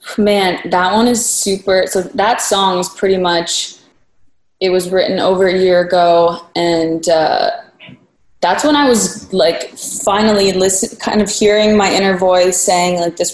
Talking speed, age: 160 wpm, 20-39